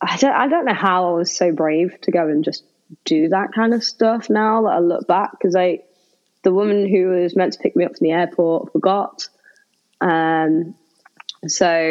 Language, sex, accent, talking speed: English, female, British, 200 wpm